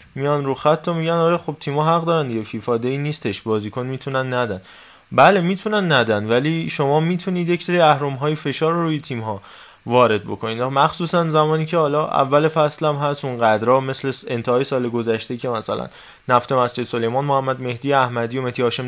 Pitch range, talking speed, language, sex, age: 125-155 Hz, 180 wpm, Persian, male, 20-39